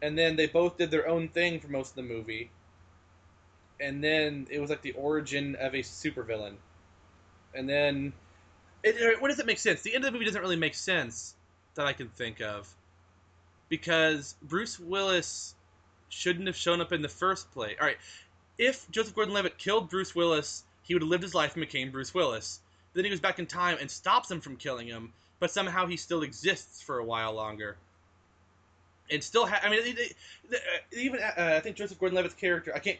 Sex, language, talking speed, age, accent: male, English, 200 wpm, 20-39, American